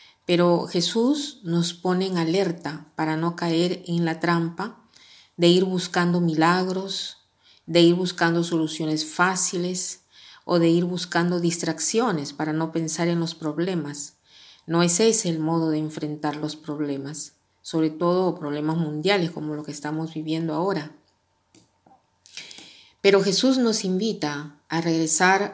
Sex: female